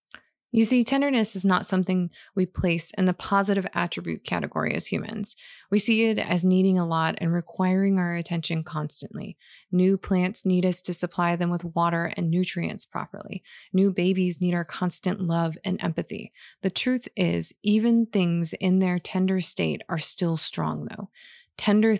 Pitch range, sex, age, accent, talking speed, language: 175-200 Hz, female, 20-39, American, 165 wpm, English